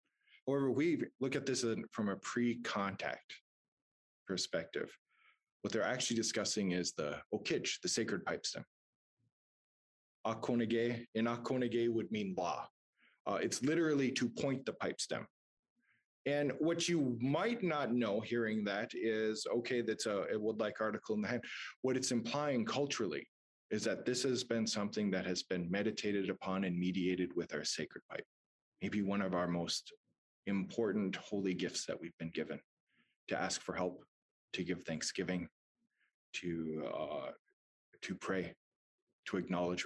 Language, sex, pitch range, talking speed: English, male, 95-125 Hz, 145 wpm